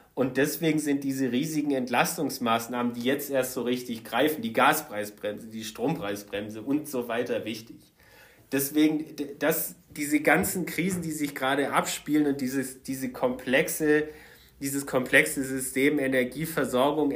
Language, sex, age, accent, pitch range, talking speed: German, male, 30-49, German, 120-150 Hz, 120 wpm